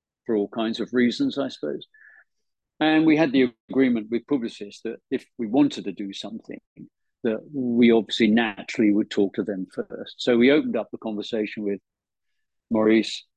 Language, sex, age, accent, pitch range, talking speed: English, male, 50-69, British, 105-125 Hz, 165 wpm